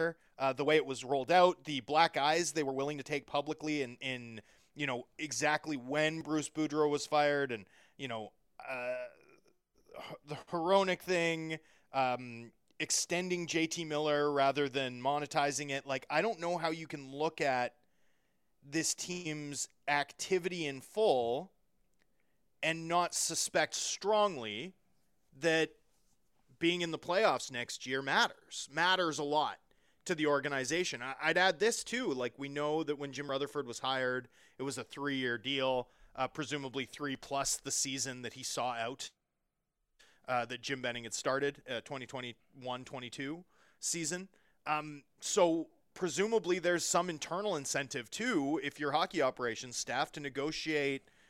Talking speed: 145 wpm